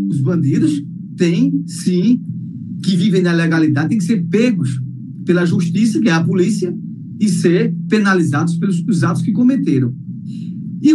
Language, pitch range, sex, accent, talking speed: Portuguese, 170-245 Hz, male, Brazilian, 135 wpm